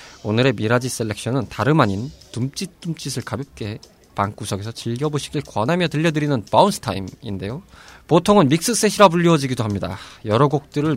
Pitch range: 110-155 Hz